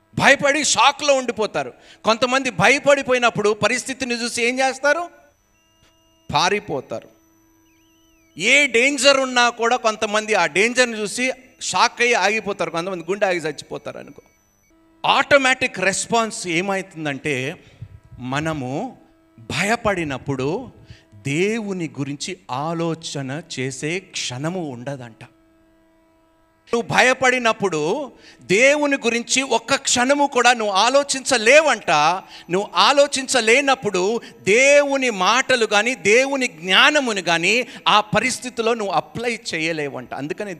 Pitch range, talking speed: 165-260 Hz, 90 wpm